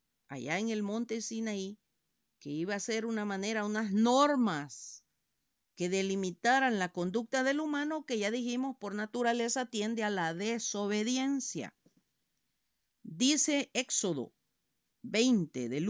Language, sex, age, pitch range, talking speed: Spanish, female, 50-69, 205-255 Hz, 120 wpm